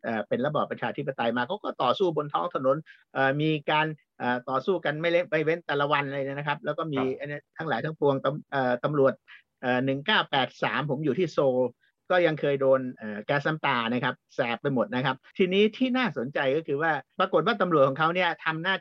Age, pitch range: 50-69, 135-175 Hz